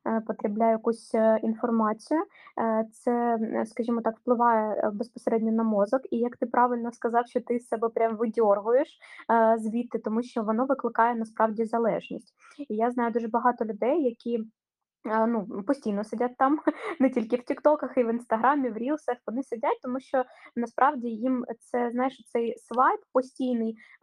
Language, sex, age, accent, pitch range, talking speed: Ukrainian, female, 20-39, native, 225-250 Hz, 145 wpm